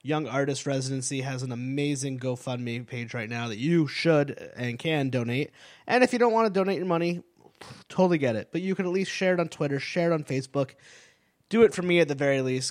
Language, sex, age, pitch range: English, male, 20-39, 130-165 Hz